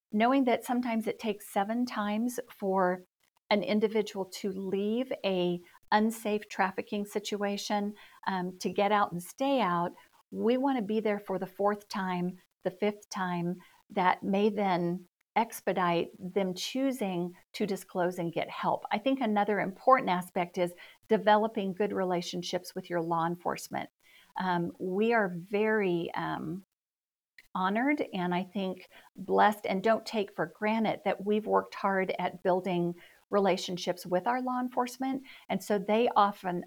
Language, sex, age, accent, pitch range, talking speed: English, female, 50-69, American, 180-215 Hz, 145 wpm